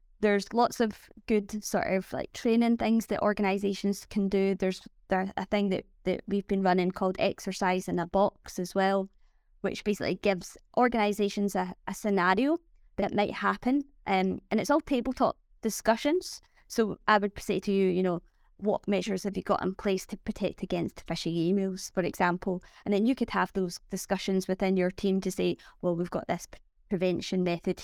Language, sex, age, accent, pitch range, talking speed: English, female, 20-39, British, 190-215 Hz, 185 wpm